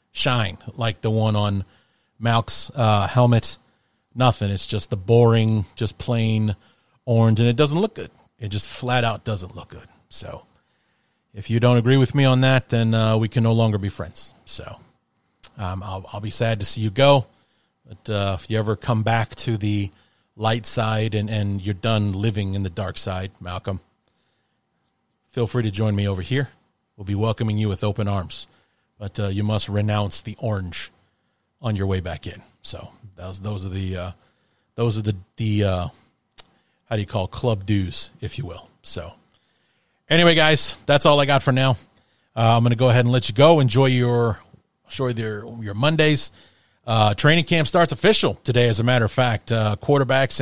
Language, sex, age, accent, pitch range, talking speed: English, male, 40-59, American, 105-125 Hz, 190 wpm